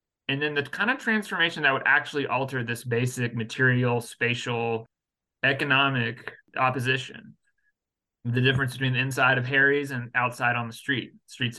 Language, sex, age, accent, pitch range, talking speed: English, male, 30-49, American, 120-145 Hz, 150 wpm